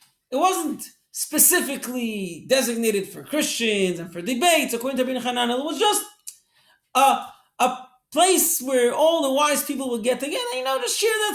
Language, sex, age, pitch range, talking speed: English, male, 40-59, 225-285 Hz, 160 wpm